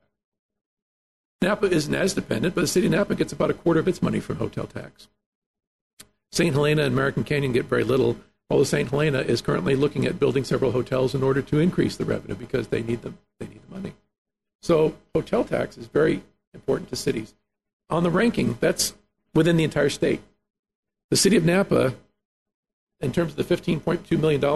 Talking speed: 190 wpm